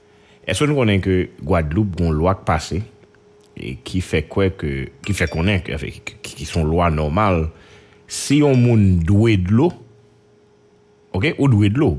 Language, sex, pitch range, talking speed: English, male, 75-105 Hz, 140 wpm